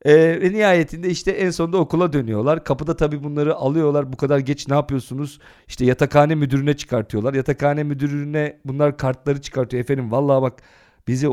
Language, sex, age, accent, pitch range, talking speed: Turkish, male, 40-59, native, 135-185 Hz, 155 wpm